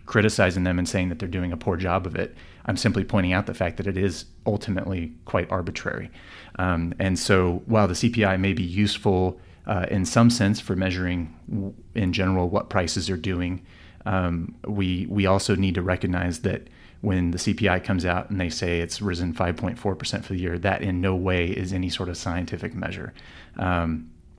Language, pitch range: English, 90-105 Hz